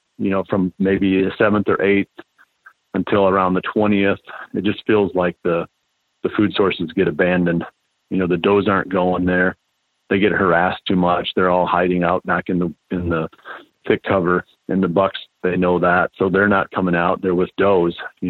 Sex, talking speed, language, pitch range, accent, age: male, 195 wpm, English, 90-100 Hz, American, 40-59